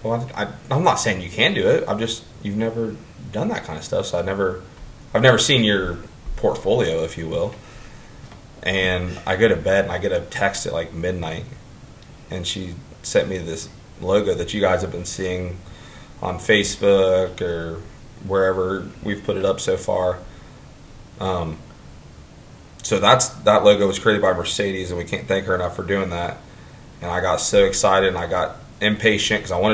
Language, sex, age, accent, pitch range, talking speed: English, male, 20-39, American, 90-115 Hz, 190 wpm